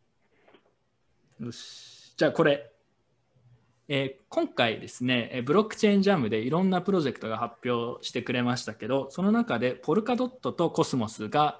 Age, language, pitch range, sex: 20-39, Japanese, 115-170 Hz, male